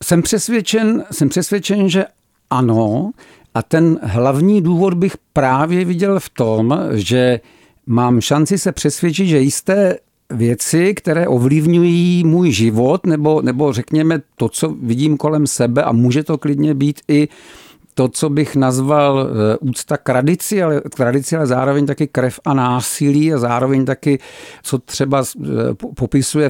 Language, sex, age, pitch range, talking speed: Czech, male, 50-69, 125-160 Hz, 140 wpm